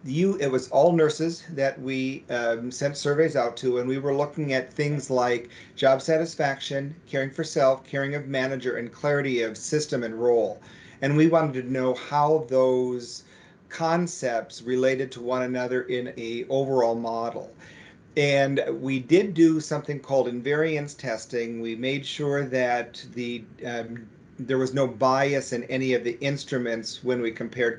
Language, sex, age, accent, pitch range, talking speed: English, male, 40-59, American, 115-140 Hz, 160 wpm